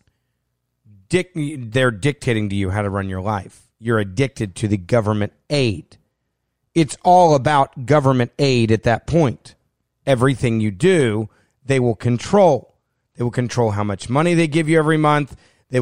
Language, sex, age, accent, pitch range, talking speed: English, male, 40-59, American, 115-150 Hz, 155 wpm